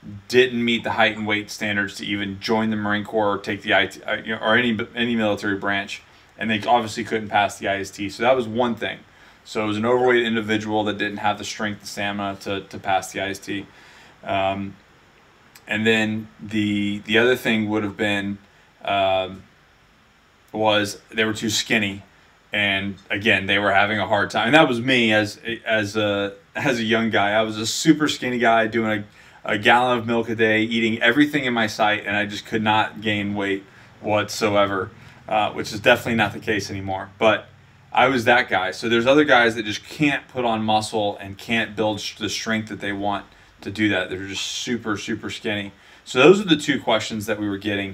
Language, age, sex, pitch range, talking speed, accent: English, 20-39, male, 100-115 Hz, 205 wpm, American